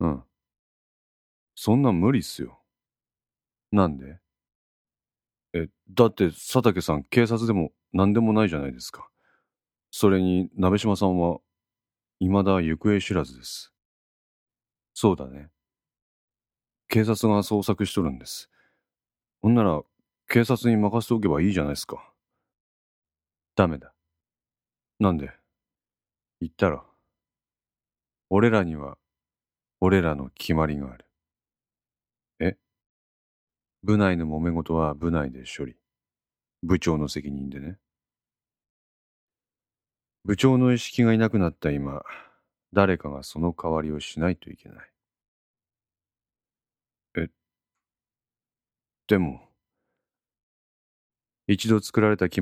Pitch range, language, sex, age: 70-100 Hz, Japanese, male, 40-59